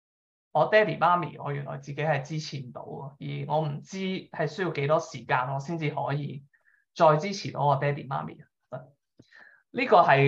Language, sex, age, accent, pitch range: Chinese, male, 20-39, native, 145-185 Hz